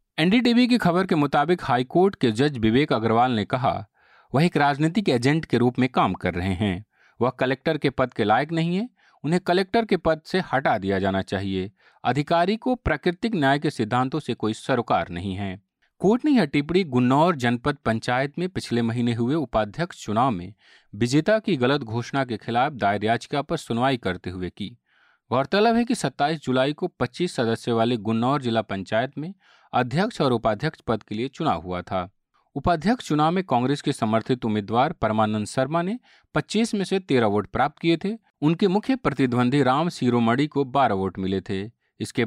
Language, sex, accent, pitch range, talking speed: Hindi, male, native, 115-165 Hz, 185 wpm